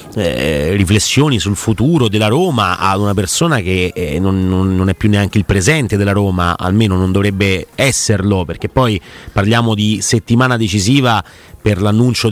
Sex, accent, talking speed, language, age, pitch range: male, native, 155 wpm, Italian, 30-49, 100-115 Hz